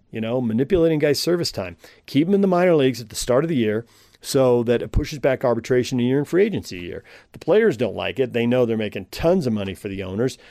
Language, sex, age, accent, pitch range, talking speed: English, male, 40-59, American, 115-150 Hz, 265 wpm